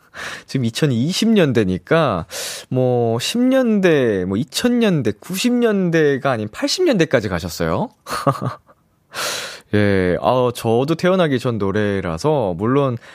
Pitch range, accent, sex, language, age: 100-165 Hz, native, male, Korean, 20-39